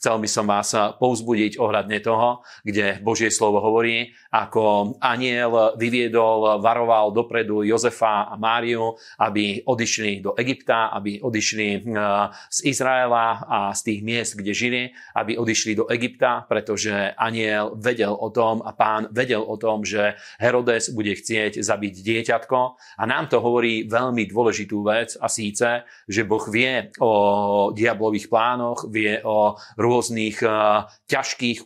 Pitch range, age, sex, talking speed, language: 105-120 Hz, 40-59, male, 135 wpm, Slovak